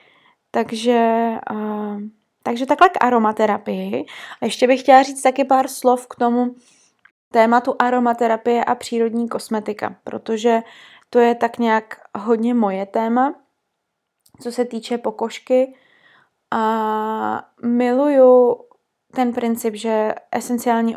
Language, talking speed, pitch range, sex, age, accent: Czech, 110 wpm, 230-255 Hz, female, 20-39, native